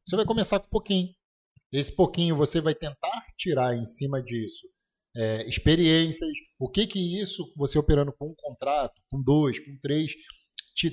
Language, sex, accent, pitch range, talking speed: Portuguese, male, Brazilian, 130-195 Hz, 170 wpm